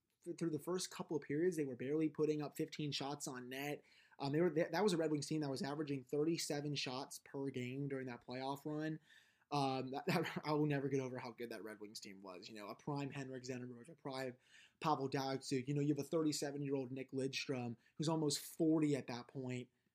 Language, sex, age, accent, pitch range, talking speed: English, male, 20-39, American, 135-155 Hz, 230 wpm